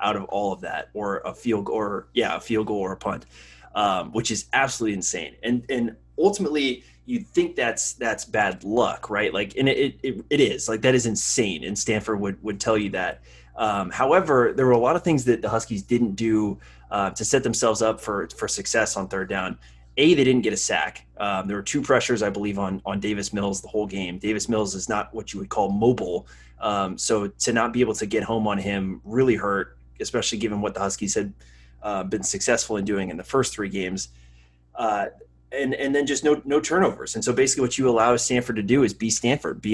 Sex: male